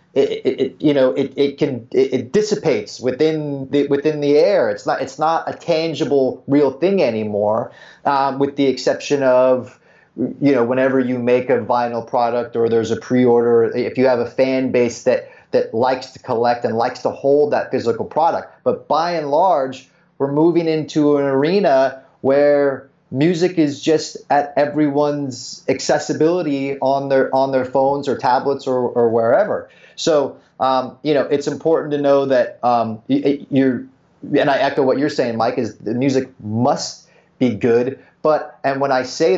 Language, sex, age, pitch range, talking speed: English, male, 30-49, 125-150 Hz, 175 wpm